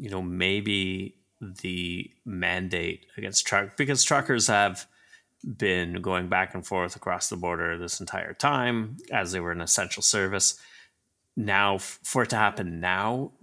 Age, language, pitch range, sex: 30-49, English, 90-120 Hz, male